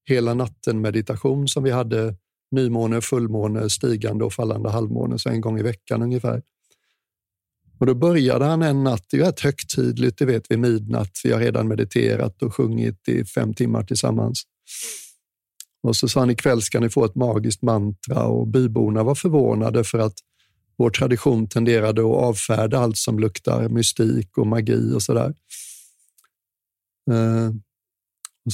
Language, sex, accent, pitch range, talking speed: Swedish, male, native, 110-130 Hz, 155 wpm